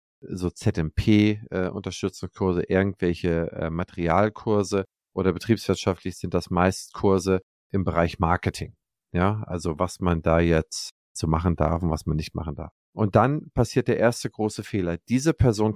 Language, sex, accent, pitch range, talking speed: German, male, German, 95-110 Hz, 150 wpm